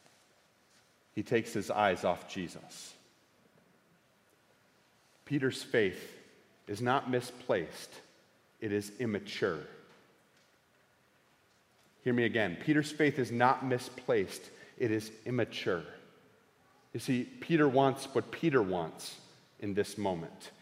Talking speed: 100 wpm